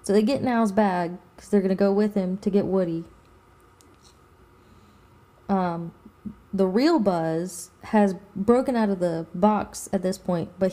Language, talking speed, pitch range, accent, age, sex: English, 155 wpm, 160-210 Hz, American, 20-39, female